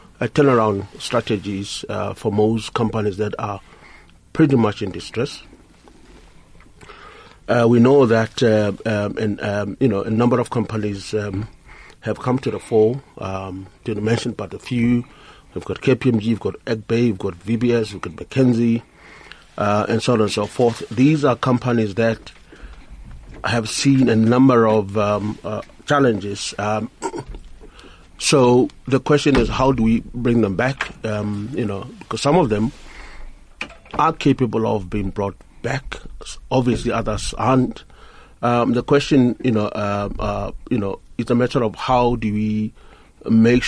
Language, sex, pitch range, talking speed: English, male, 105-125 Hz, 155 wpm